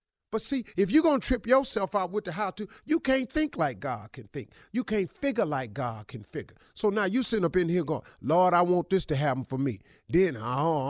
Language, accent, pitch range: English, American, 175-230 Hz